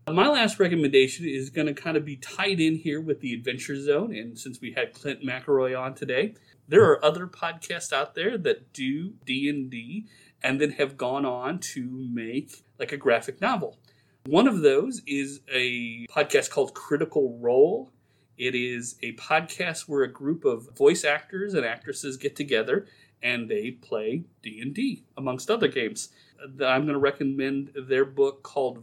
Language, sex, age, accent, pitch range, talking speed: English, male, 40-59, American, 130-185 Hz, 170 wpm